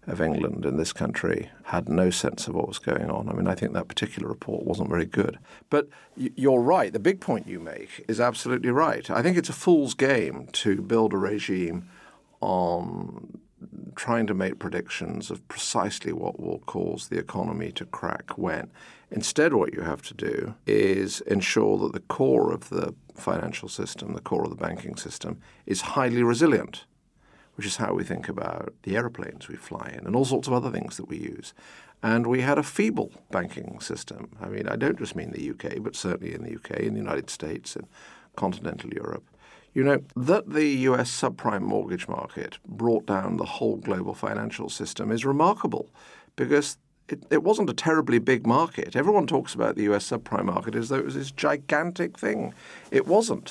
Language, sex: English, male